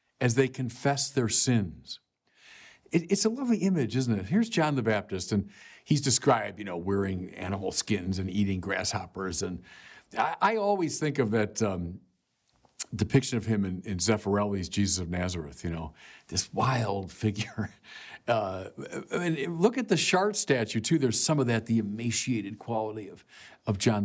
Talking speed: 170 wpm